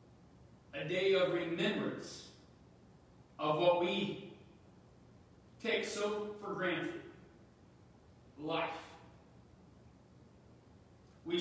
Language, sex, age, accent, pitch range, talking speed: English, male, 40-59, American, 150-195 Hz, 70 wpm